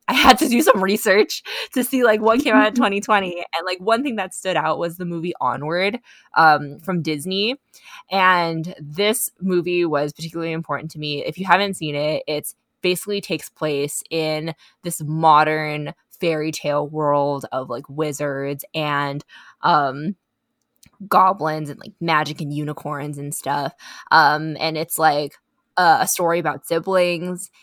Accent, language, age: American, English, 20-39